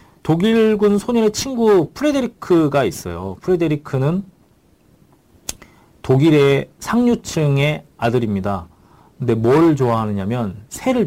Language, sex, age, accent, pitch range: Korean, male, 40-59, native, 115-170 Hz